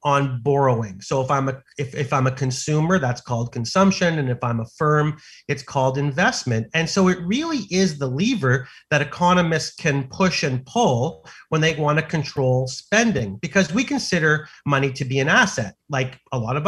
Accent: American